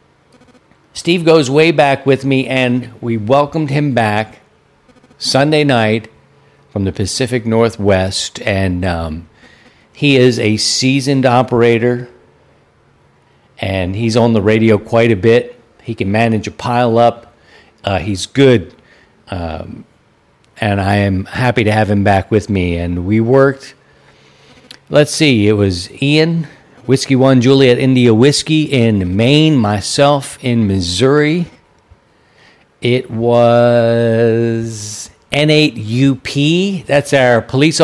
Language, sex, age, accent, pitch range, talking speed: English, male, 50-69, American, 110-145 Hz, 120 wpm